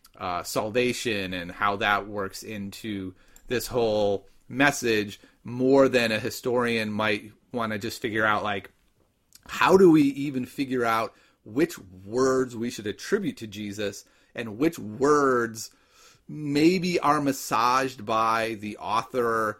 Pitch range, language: 105-135 Hz, English